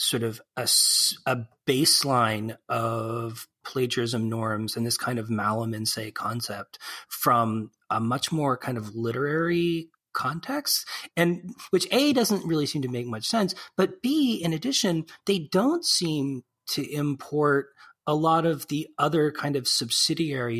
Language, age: English, 30-49